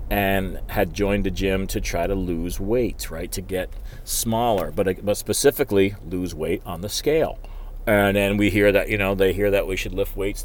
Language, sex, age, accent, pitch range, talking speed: English, male, 40-59, American, 95-110 Hz, 200 wpm